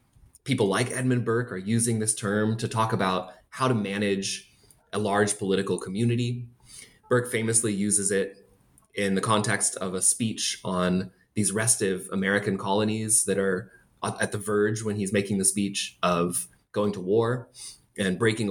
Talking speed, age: 160 wpm, 20-39